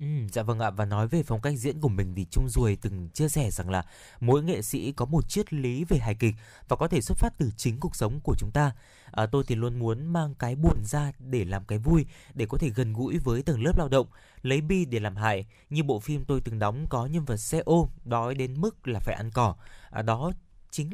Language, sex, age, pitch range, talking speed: Vietnamese, male, 20-39, 115-155 Hz, 260 wpm